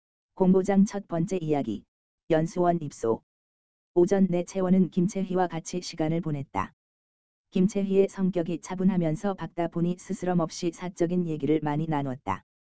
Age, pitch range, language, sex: 20-39, 110-180 Hz, Korean, female